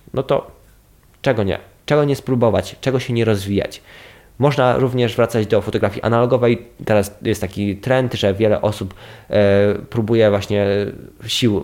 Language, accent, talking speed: Polish, native, 140 wpm